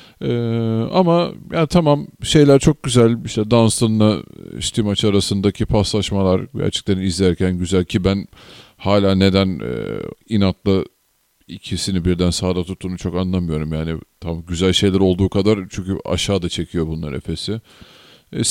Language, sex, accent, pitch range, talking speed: Turkish, male, native, 95-120 Hz, 130 wpm